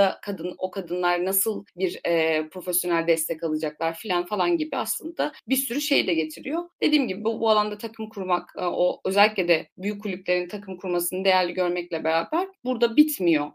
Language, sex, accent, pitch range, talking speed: Turkish, female, native, 165-265 Hz, 165 wpm